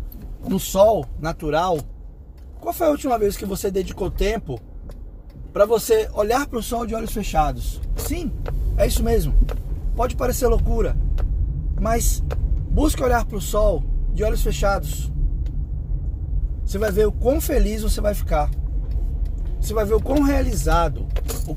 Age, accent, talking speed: 20-39, Brazilian, 145 wpm